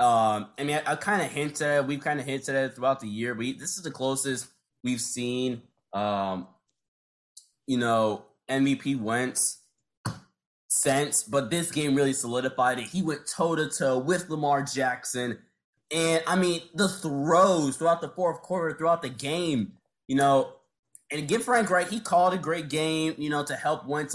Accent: American